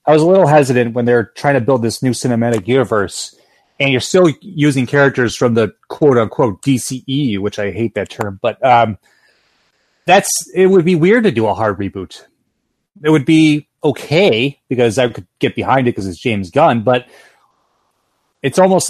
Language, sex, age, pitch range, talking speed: English, male, 30-49, 120-165 Hz, 180 wpm